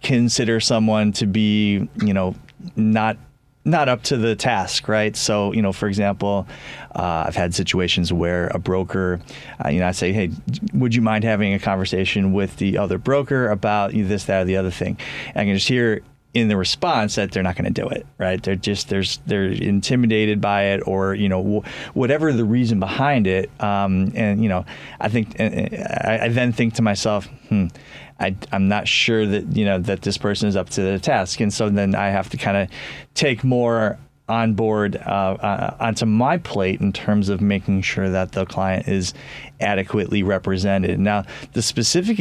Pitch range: 95-115 Hz